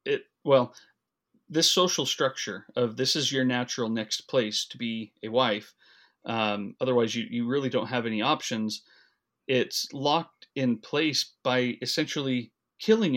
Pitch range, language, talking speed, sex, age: 115-135 Hz, English, 140 wpm, male, 30-49